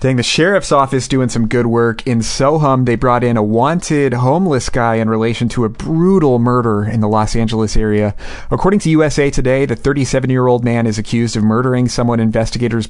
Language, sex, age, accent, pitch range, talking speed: English, male, 30-49, American, 110-130 Hz, 190 wpm